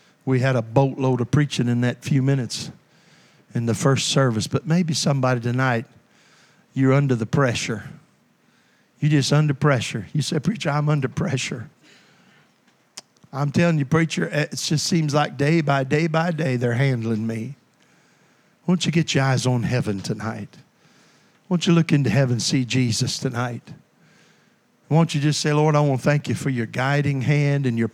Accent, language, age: American, English, 50-69